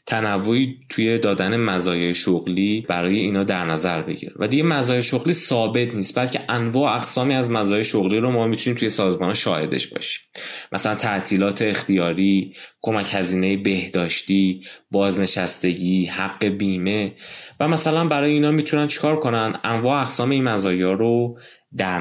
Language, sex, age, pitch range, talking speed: Persian, male, 20-39, 100-130 Hz, 140 wpm